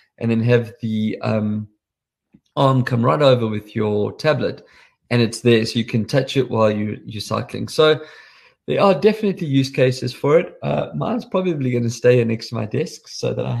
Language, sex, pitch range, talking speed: English, male, 115-145 Hz, 200 wpm